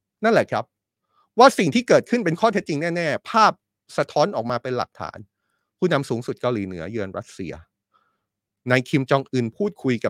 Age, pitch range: 30-49, 105-150 Hz